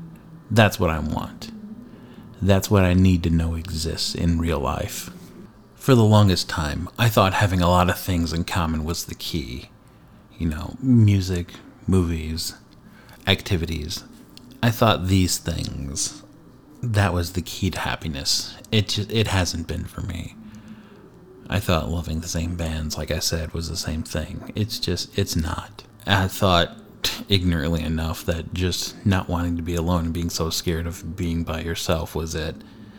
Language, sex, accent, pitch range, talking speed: English, male, American, 85-100 Hz, 165 wpm